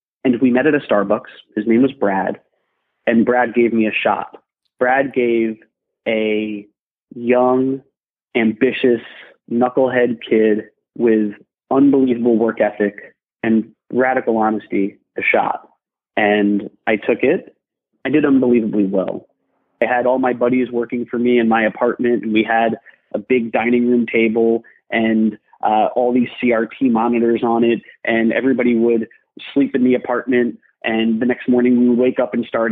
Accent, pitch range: American, 110-125 Hz